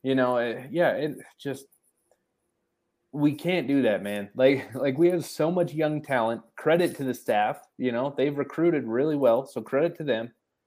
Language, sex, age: English, male, 20-39